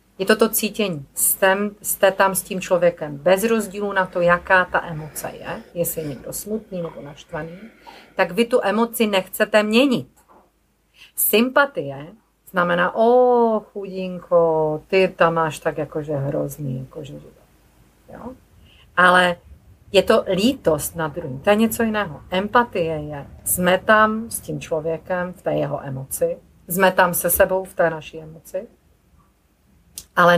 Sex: female